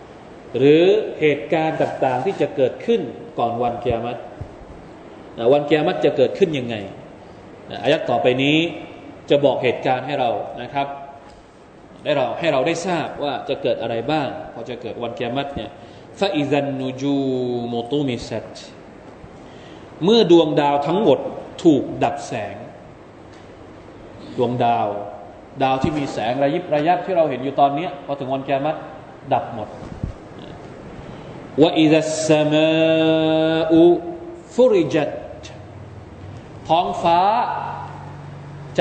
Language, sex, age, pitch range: Thai, male, 20-39, 135-170 Hz